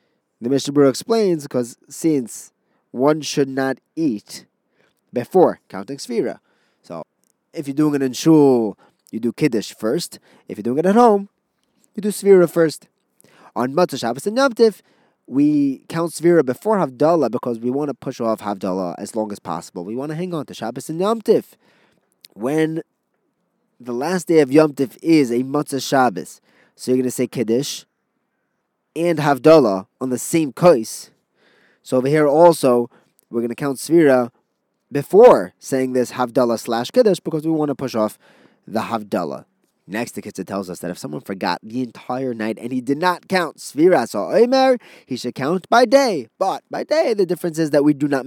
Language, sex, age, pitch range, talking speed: English, male, 20-39, 120-170 Hz, 180 wpm